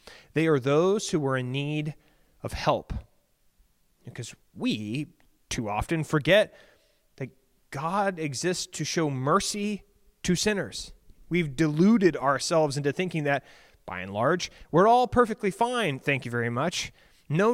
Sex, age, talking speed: male, 30-49, 135 wpm